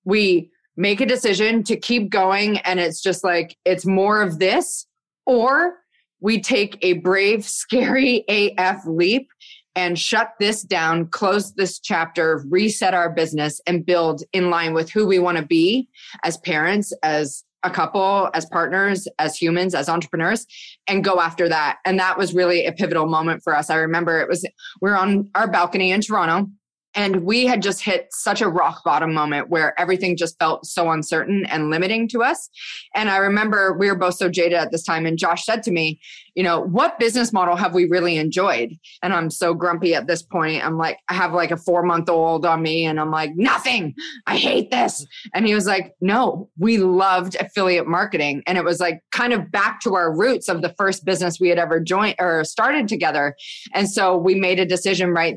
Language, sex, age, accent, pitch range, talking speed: English, female, 20-39, American, 170-200 Hz, 200 wpm